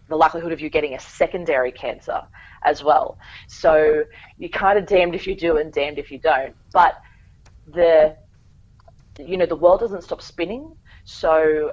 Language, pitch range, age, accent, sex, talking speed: English, 135-170 Hz, 30-49, Australian, female, 170 wpm